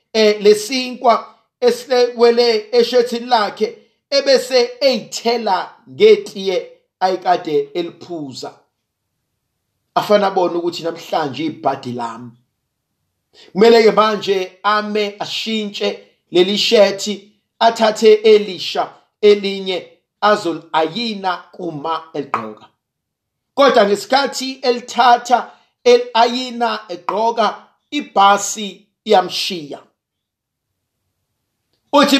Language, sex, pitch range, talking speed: English, male, 180-245 Hz, 65 wpm